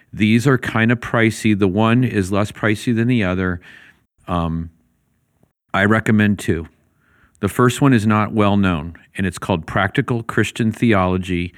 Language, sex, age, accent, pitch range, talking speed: English, male, 40-59, American, 90-110 Hz, 155 wpm